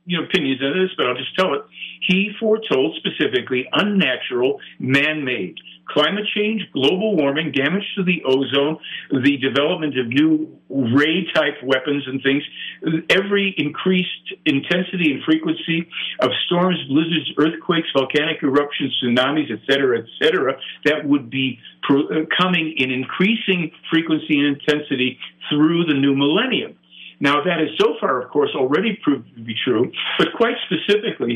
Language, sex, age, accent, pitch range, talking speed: English, male, 50-69, American, 135-185 Hz, 145 wpm